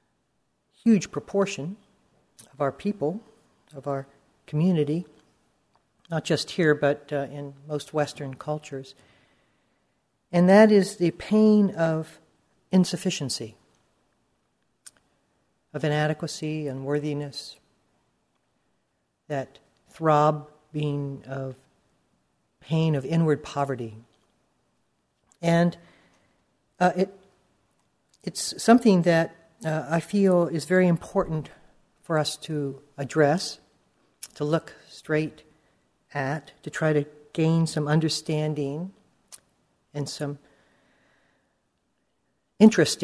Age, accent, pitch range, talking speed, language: 50-69, American, 145-180 Hz, 90 wpm, English